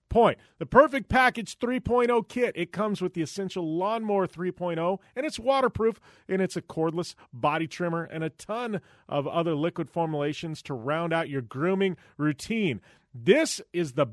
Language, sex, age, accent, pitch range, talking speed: English, male, 40-59, American, 140-190 Hz, 160 wpm